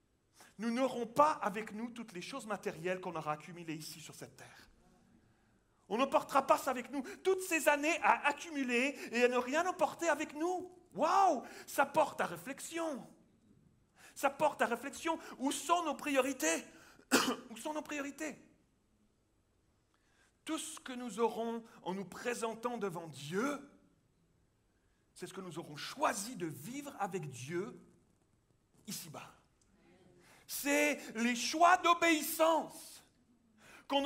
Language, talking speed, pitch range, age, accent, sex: French, 135 wpm, 215-290 Hz, 40-59, French, male